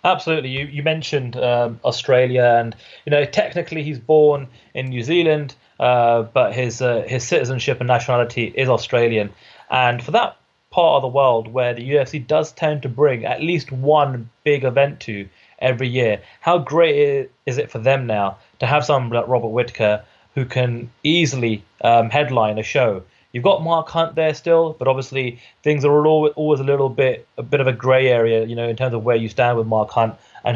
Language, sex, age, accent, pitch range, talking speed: English, male, 30-49, British, 120-145 Hz, 190 wpm